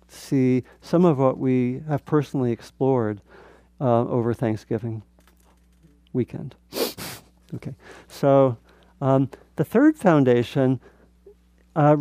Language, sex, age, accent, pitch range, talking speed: English, male, 50-69, American, 120-145 Hz, 95 wpm